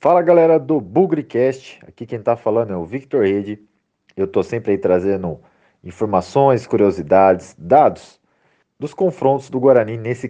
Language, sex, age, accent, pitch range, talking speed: Portuguese, male, 40-59, Brazilian, 110-145 Hz, 145 wpm